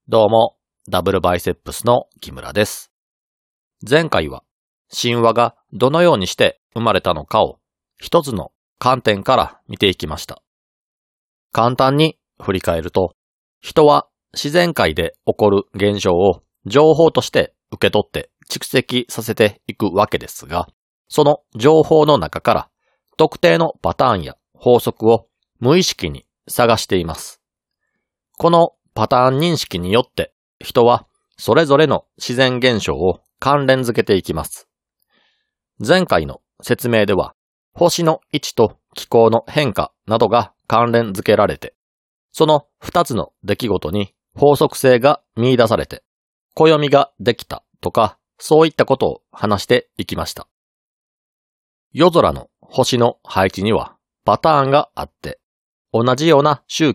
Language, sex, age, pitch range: Japanese, male, 40-59, 115-155 Hz